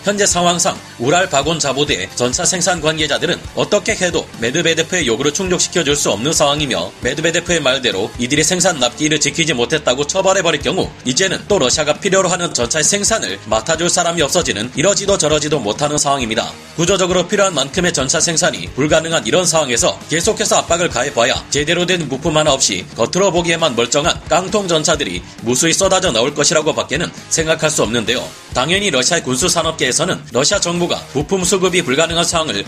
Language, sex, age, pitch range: Korean, male, 30-49, 140-180 Hz